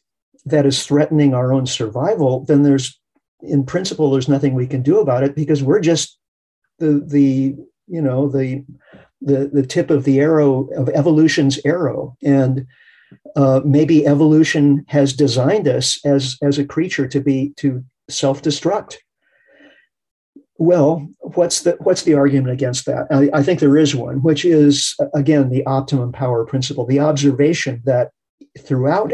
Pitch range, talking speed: 135-150 Hz, 155 wpm